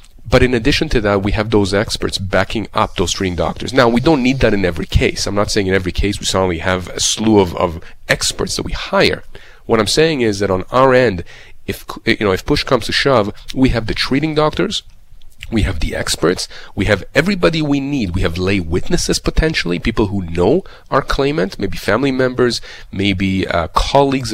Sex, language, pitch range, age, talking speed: male, English, 95-130 Hz, 30-49, 210 wpm